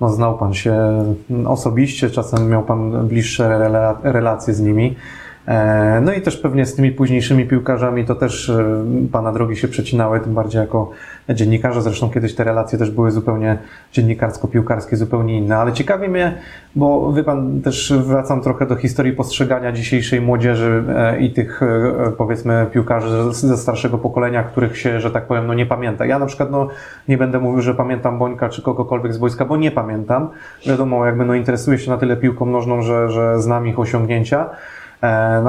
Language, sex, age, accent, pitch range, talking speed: Polish, male, 30-49, native, 115-135 Hz, 170 wpm